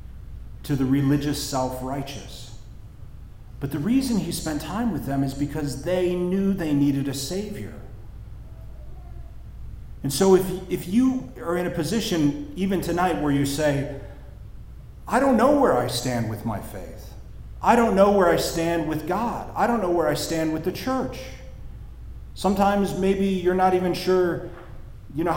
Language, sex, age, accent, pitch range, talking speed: English, male, 40-59, American, 115-180 Hz, 160 wpm